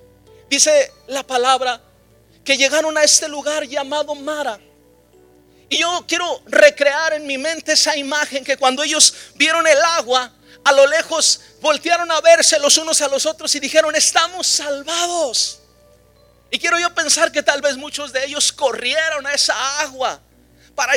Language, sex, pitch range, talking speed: Spanish, male, 245-305 Hz, 155 wpm